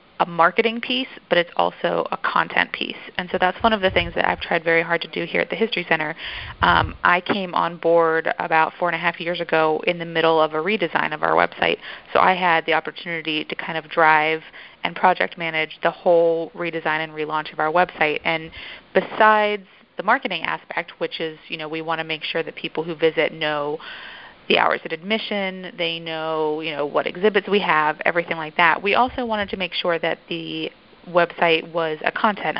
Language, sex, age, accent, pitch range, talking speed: English, female, 30-49, American, 160-180 Hz, 210 wpm